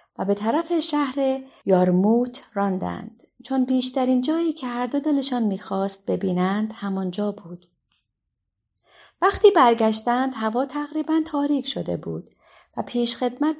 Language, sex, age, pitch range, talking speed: Persian, female, 40-59, 185-270 Hz, 115 wpm